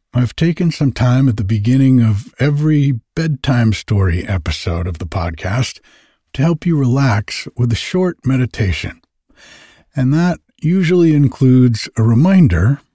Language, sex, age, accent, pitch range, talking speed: English, male, 60-79, American, 100-140 Hz, 135 wpm